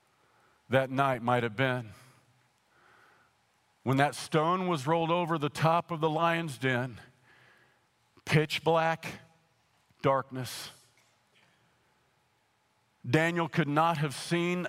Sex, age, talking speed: male, 50-69, 100 wpm